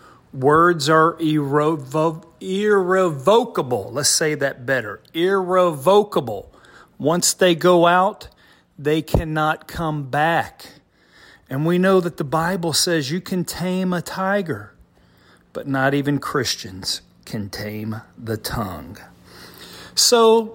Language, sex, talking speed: English, male, 110 wpm